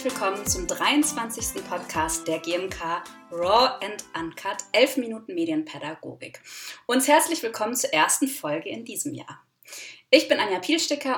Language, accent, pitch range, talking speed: German, German, 185-290 Hz, 140 wpm